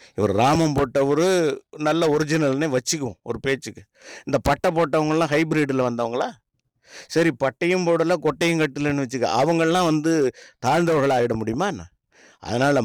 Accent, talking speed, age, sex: native, 115 wpm, 50-69, male